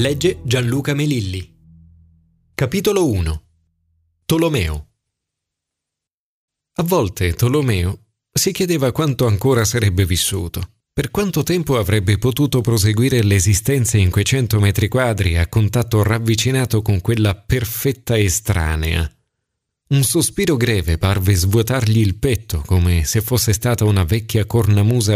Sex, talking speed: male, 115 wpm